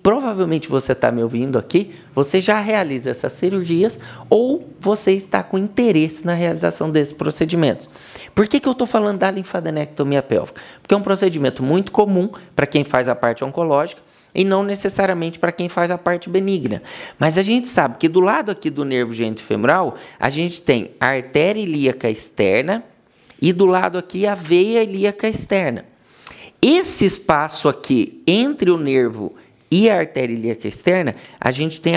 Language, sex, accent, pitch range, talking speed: Portuguese, male, Brazilian, 140-195 Hz, 170 wpm